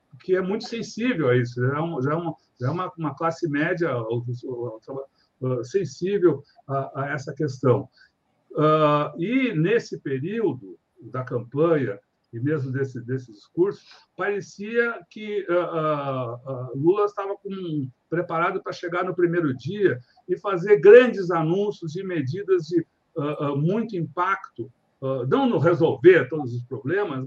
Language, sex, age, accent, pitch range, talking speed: Portuguese, male, 60-79, Brazilian, 135-185 Hz, 135 wpm